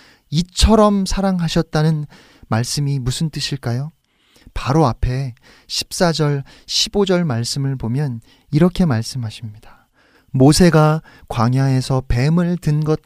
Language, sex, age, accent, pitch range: Korean, male, 30-49, native, 125-170 Hz